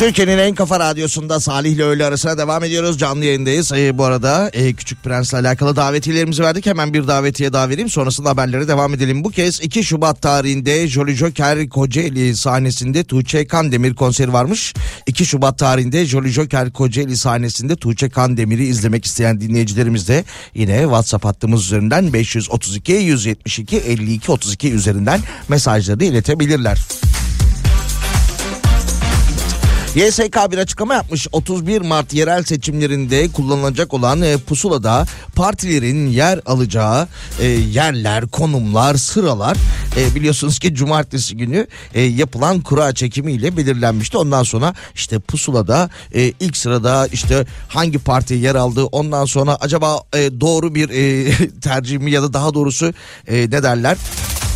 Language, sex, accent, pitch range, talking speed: Turkish, male, native, 125-155 Hz, 130 wpm